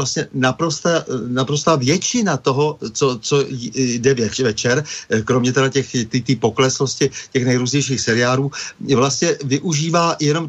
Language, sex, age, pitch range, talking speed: Slovak, male, 50-69, 125-150 Hz, 115 wpm